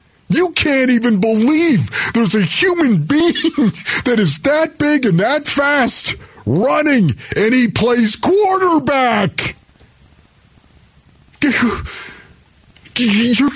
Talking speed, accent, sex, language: 95 wpm, American, male, English